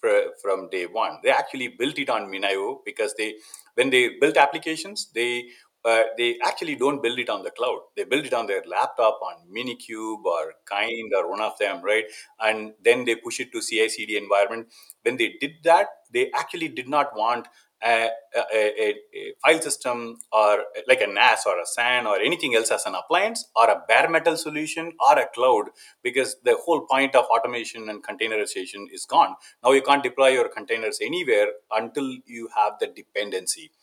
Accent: Indian